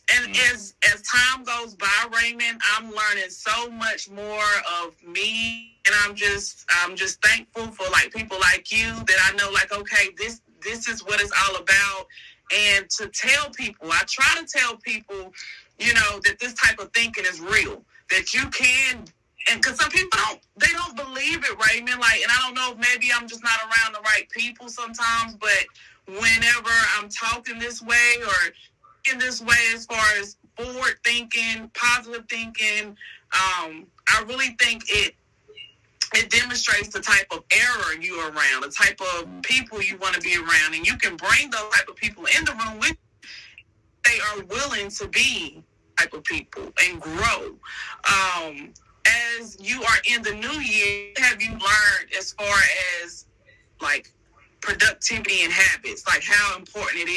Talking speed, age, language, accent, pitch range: 175 wpm, 20-39, English, American, 200-240 Hz